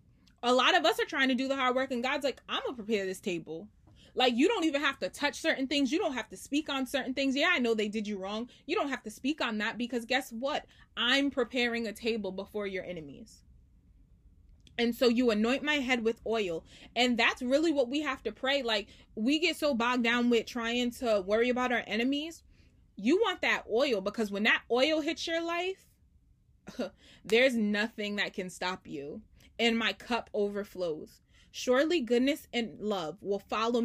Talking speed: 205 wpm